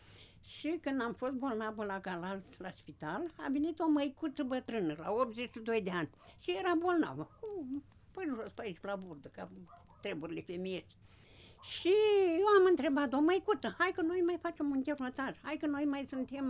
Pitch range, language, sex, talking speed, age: 195-295 Hz, Romanian, female, 180 wpm, 60-79